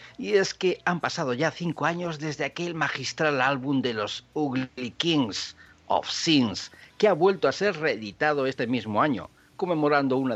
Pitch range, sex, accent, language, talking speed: 125-170 Hz, male, Spanish, Spanish, 170 wpm